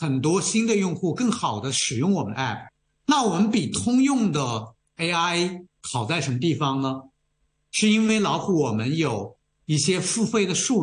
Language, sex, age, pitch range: Chinese, male, 50-69, 135-205 Hz